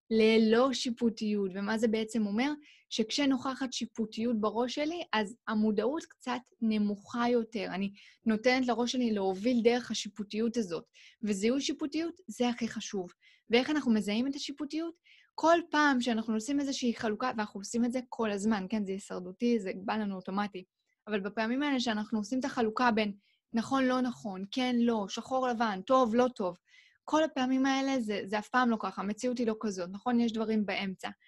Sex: female